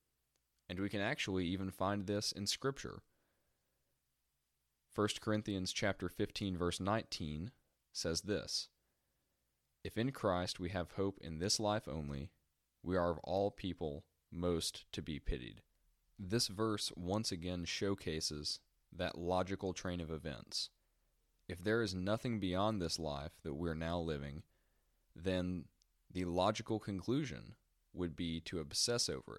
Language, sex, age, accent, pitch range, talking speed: English, male, 20-39, American, 80-105 Hz, 135 wpm